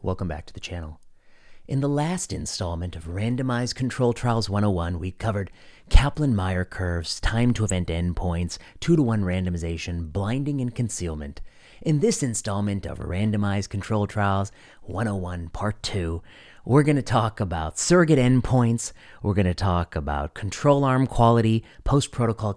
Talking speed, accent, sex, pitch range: 145 wpm, American, male, 90-120 Hz